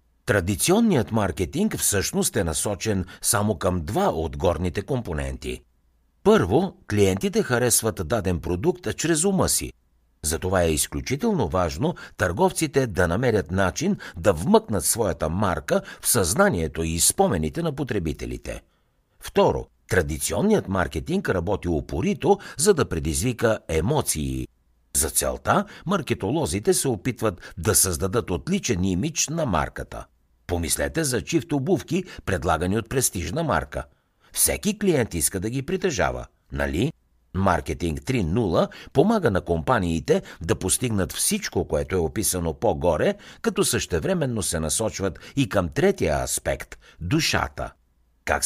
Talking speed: 120 wpm